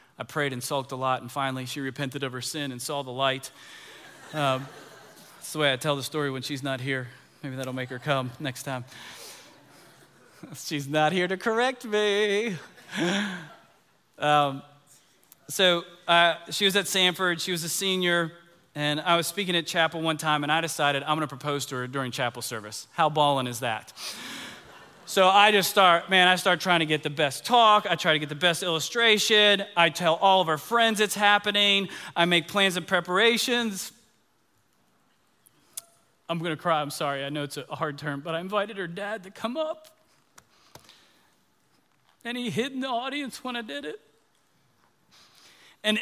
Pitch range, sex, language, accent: 145-210 Hz, male, English, American